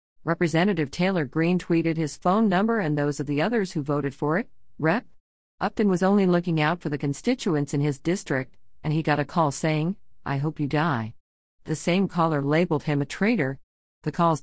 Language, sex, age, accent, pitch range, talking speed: English, female, 50-69, American, 145-185 Hz, 195 wpm